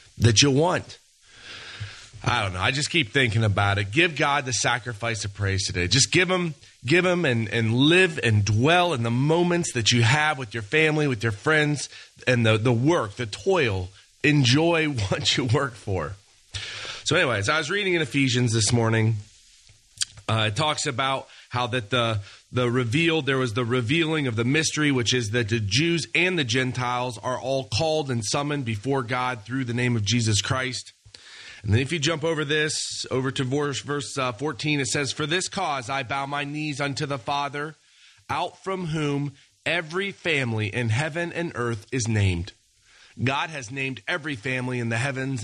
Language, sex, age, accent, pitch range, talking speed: English, male, 30-49, American, 115-150 Hz, 185 wpm